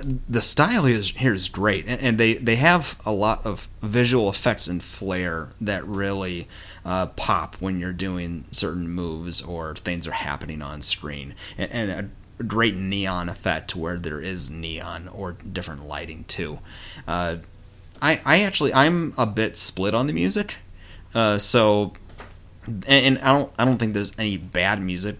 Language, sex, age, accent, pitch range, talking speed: English, male, 30-49, American, 85-105 Hz, 150 wpm